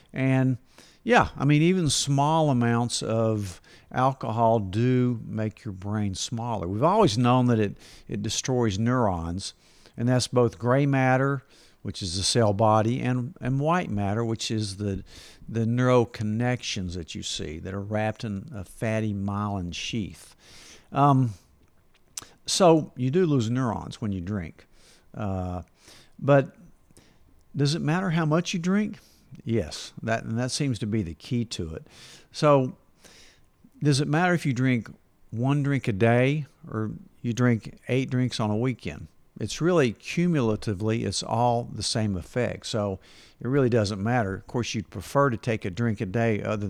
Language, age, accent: English, 50-69, American